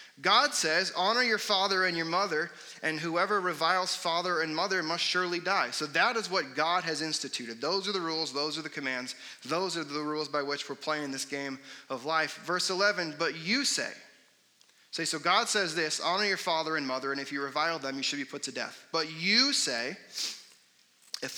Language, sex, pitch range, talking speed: English, male, 135-170 Hz, 210 wpm